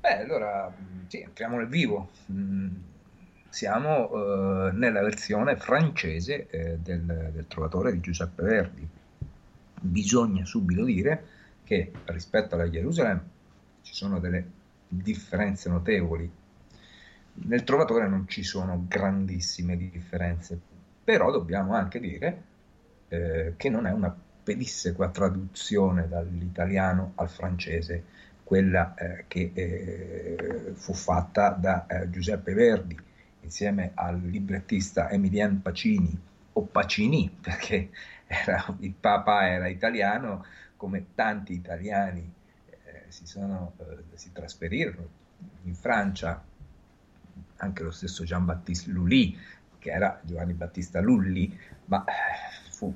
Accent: native